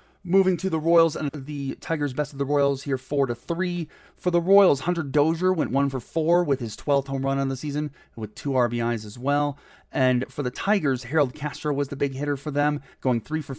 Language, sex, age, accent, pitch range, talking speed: English, male, 30-49, American, 125-155 Hz, 230 wpm